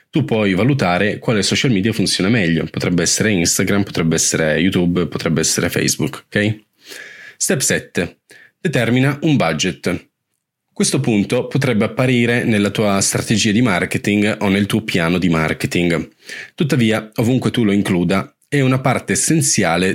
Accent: native